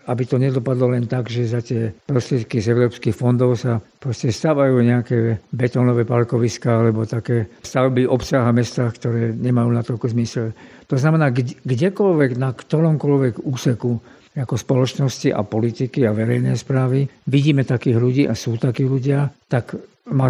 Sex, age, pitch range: male, 50-69, 120-140 Hz